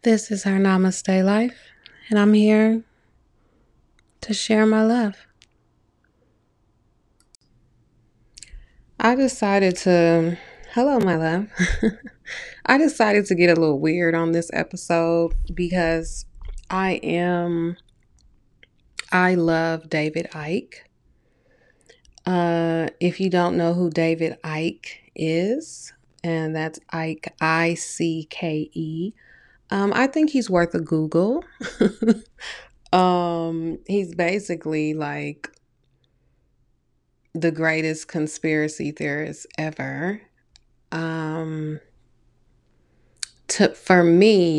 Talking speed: 95 wpm